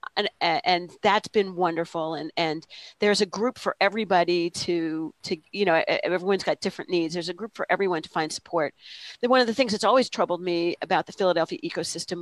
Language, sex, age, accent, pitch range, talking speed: English, female, 40-59, American, 170-205 Hz, 195 wpm